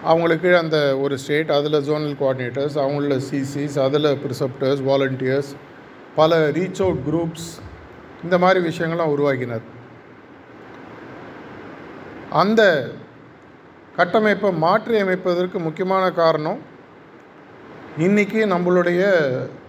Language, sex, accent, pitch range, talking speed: Tamil, male, native, 140-170 Hz, 80 wpm